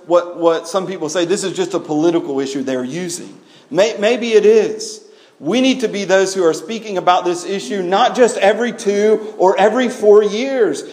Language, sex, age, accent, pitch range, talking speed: English, male, 40-59, American, 155-225 Hz, 200 wpm